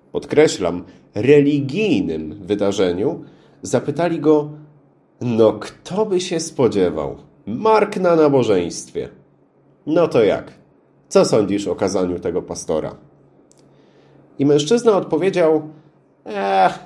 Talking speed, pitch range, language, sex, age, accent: 95 wpm, 100-155 Hz, Polish, male, 40-59, native